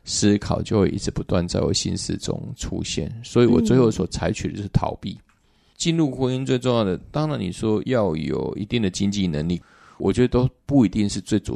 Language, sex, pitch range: Chinese, male, 90-110 Hz